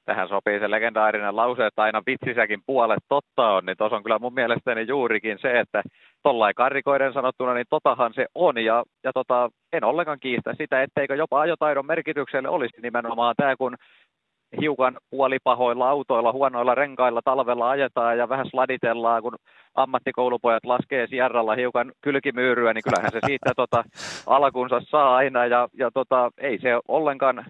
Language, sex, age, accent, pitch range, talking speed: Finnish, male, 30-49, native, 115-130 Hz, 160 wpm